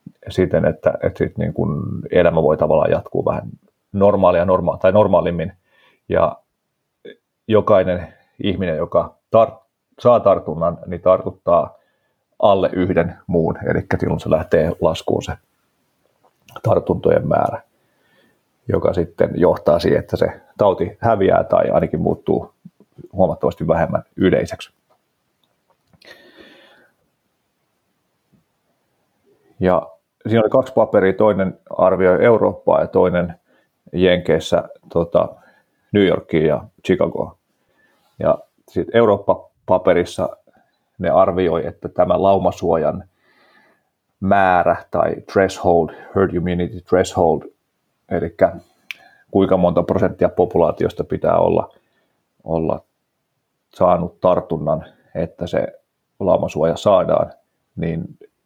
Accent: native